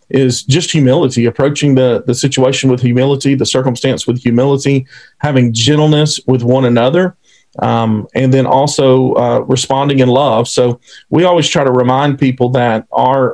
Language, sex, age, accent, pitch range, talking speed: English, male, 40-59, American, 125-155 Hz, 155 wpm